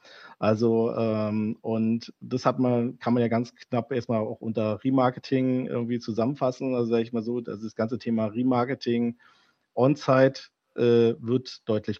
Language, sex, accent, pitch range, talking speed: German, male, German, 105-120 Hz, 140 wpm